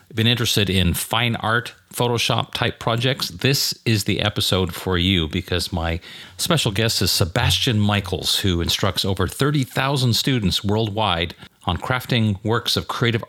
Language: English